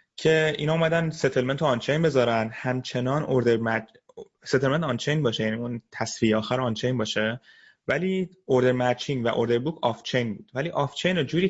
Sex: male